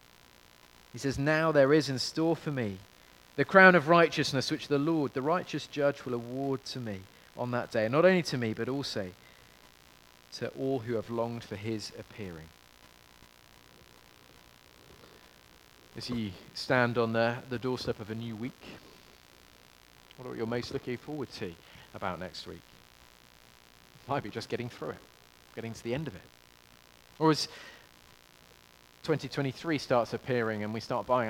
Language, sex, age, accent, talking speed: English, male, 40-59, British, 155 wpm